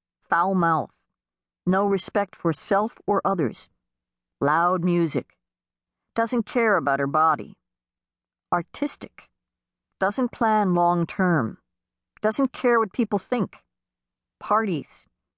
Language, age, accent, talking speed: English, 50-69, American, 100 wpm